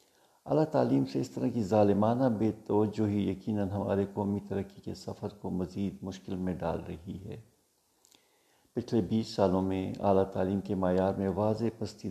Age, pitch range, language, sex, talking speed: 60-79, 95-105 Hz, Urdu, male, 175 wpm